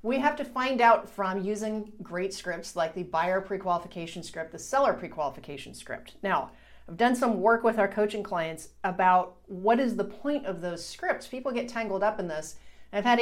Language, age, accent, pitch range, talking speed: English, 40-59, American, 170-220 Hz, 200 wpm